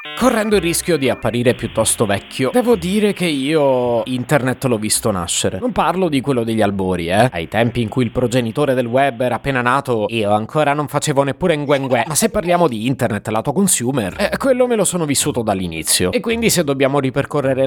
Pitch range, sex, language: 110-150 Hz, male, Italian